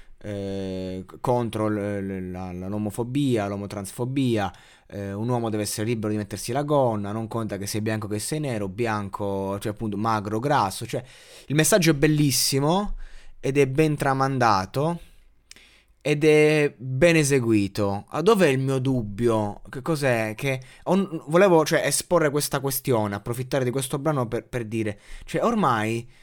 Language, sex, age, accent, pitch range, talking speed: Italian, male, 20-39, native, 110-155 Hz, 150 wpm